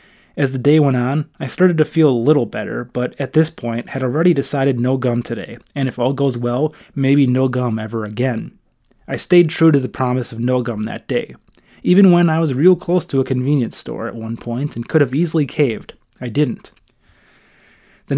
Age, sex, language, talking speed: 20-39, male, English, 210 wpm